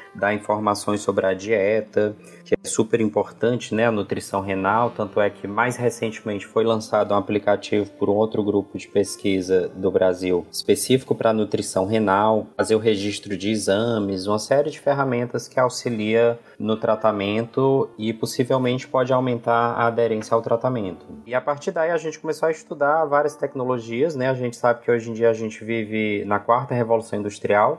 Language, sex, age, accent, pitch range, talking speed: Portuguese, male, 20-39, Brazilian, 105-120 Hz, 175 wpm